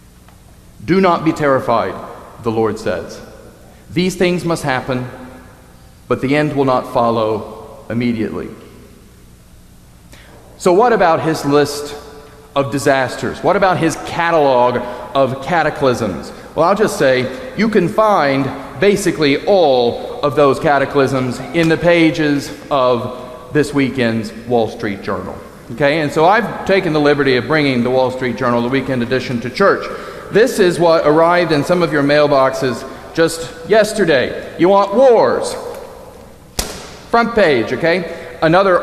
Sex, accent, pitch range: male, American, 130-175 Hz